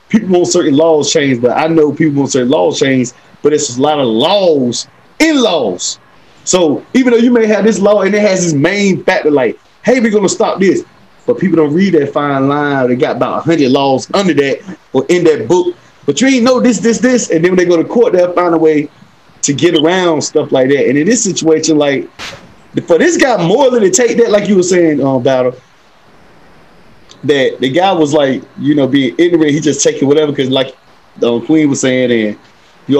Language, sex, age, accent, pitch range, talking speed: English, male, 30-49, American, 130-180 Hz, 225 wpm